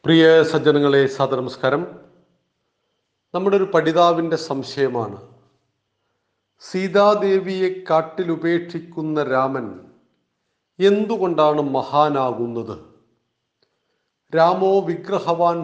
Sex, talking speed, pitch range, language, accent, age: male, 55 wpm, 140-190 Hz, Malayalam, native, 40-59